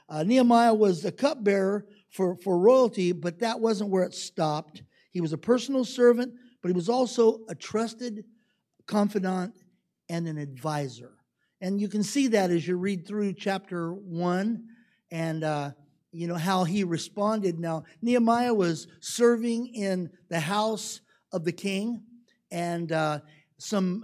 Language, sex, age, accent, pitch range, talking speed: English, male, 50-69, American, 170-220 Hz, 150 wpm